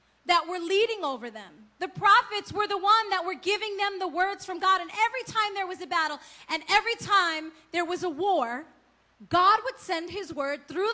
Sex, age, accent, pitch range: female, 30-49, American, 305-405 Hz